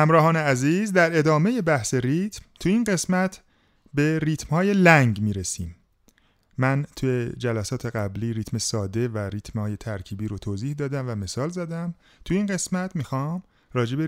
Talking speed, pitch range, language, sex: 155 wpm, 105-150 Hz, Persian, male